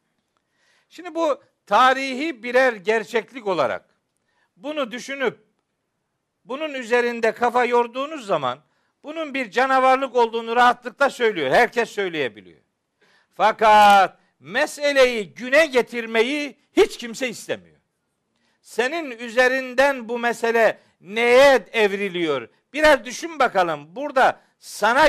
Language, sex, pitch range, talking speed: Turkish, male, 220-280 Hz, 95 wpm